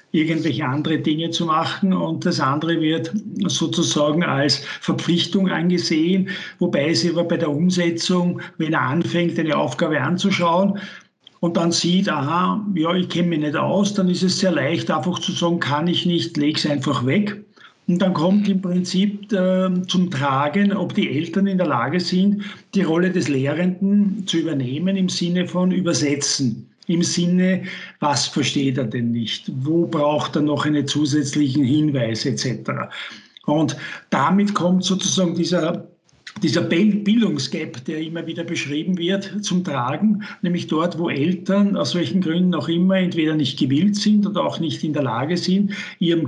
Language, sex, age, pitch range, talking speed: German, male, 60-79, 150-185 Hz, 160 wpm